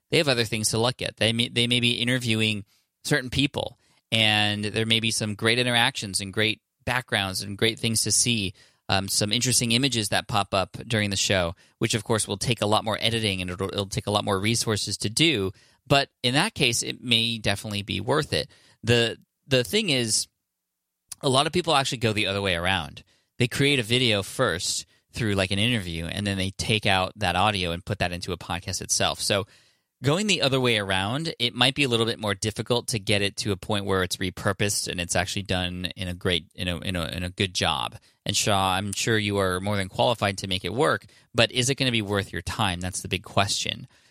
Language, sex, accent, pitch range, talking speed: English, male, American, 95-120 Hz, 230 wpm